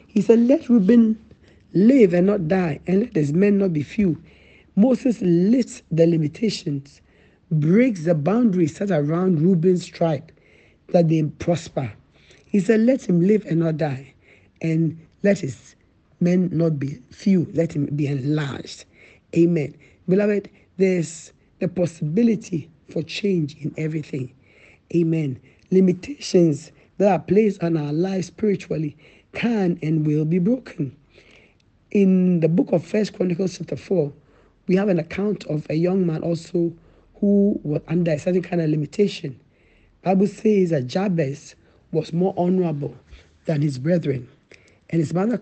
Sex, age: male, 60-79